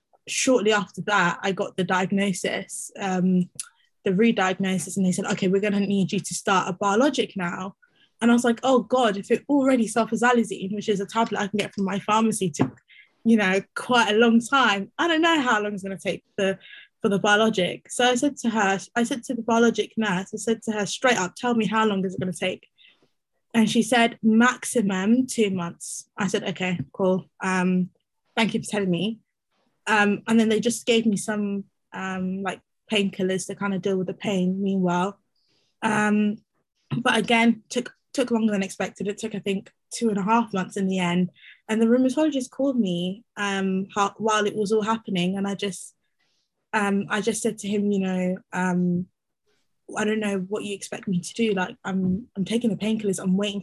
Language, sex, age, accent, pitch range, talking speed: English, female, 20-39, British, 190-230 Hz, 210 wpm